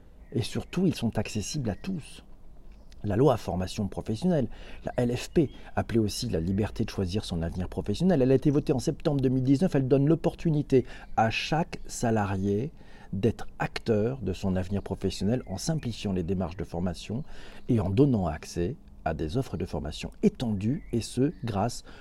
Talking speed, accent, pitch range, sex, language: 165 wpm, French, 105-135 Hz, male, French